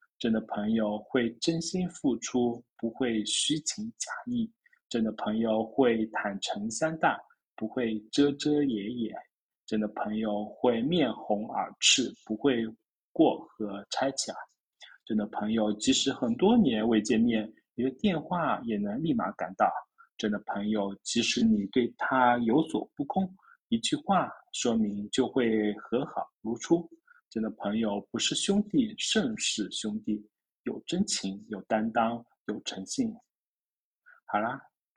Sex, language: male, Chinese